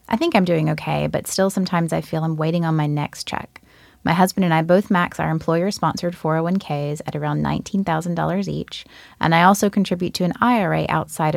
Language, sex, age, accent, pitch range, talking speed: English, female, 30-49, American, 160-190 Hz, 195 wpm